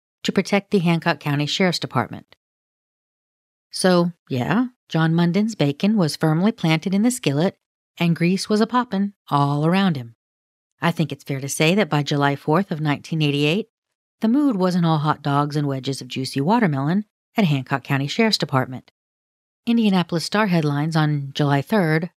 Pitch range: 145-190 Hz